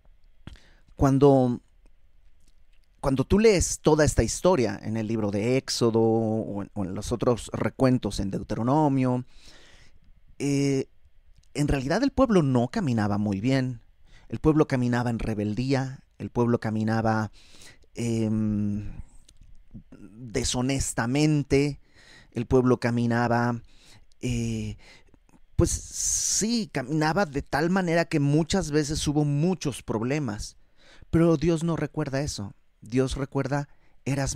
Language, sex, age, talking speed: Spanish, male, 30-49, 110 wpm